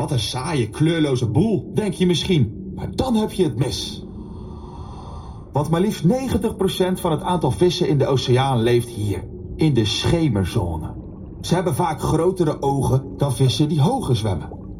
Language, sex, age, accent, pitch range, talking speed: Dutch, male, 40-59, Dutch, 115-180 Hz, 160 wpm